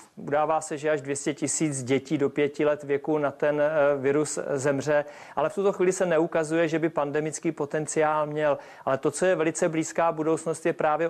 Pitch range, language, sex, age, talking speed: 145-155 Hz, Czech, male, 40-59, 190 wpm